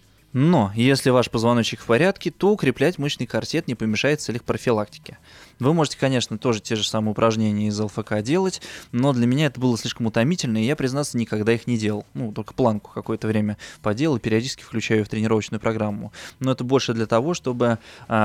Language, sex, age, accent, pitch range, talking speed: Russian, male, 20-39, native, 110-140 Hz, 185 wpm